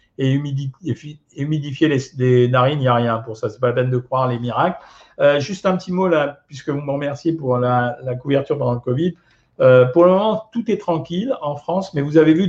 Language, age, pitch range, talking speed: French, 50-69, 135-165 Hz, 230 wpm